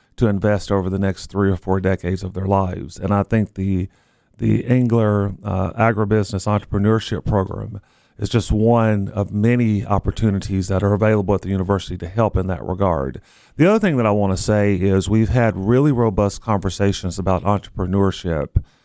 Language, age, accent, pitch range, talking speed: English, 40-59, American, 95-110 Hz, 175 wpm